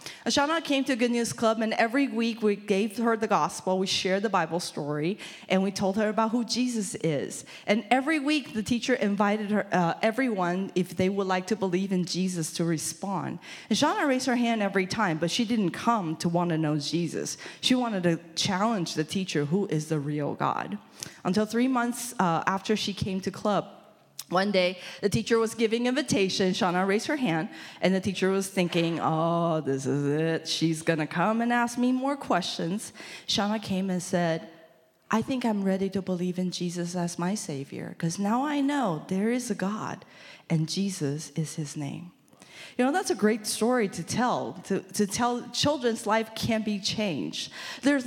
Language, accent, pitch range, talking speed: English, American, 175-230 Hz, 190 wpm